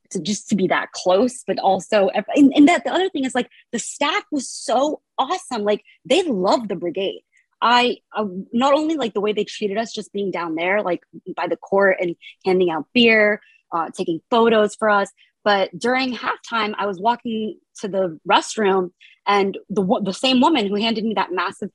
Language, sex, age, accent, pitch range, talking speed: English, female, 20-39, American, 190-260 Hz, 200 wpm